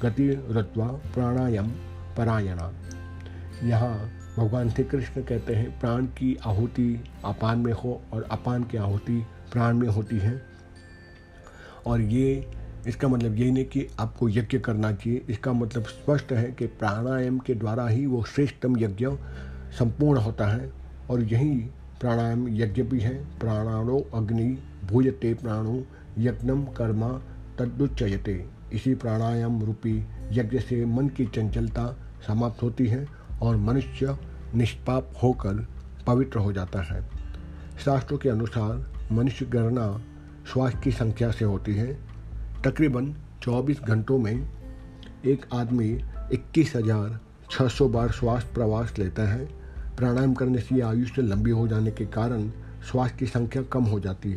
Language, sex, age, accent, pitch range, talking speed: Hindi, male, 50-69, native, 110-125 Hz, 130 wpm